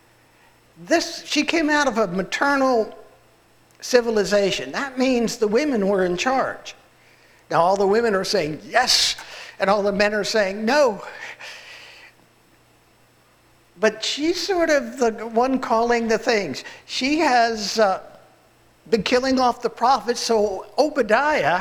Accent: American